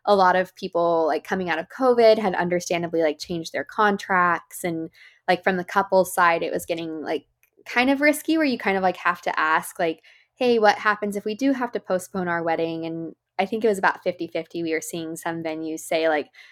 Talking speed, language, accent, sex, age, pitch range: 225 wpm, English, American, female, 20-39, 165-200 Hz